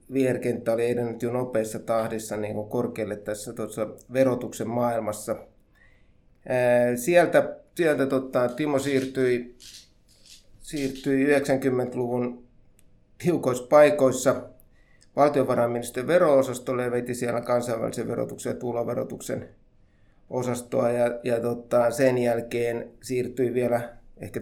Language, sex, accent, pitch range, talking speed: Finnish, male, native, 115-130 Hz, 95 wpm